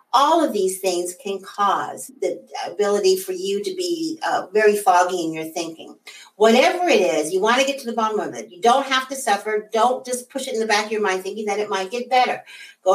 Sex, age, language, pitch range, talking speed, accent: female, 50-69, English, 185-265 Hz, 240 wpm, American